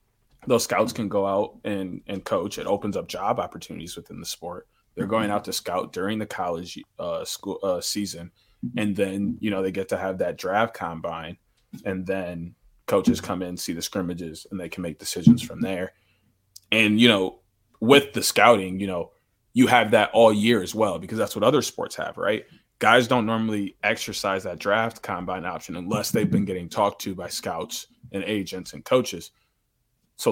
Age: 20-39